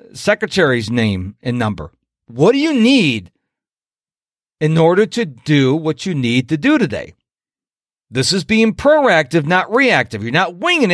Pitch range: 145-235 Hz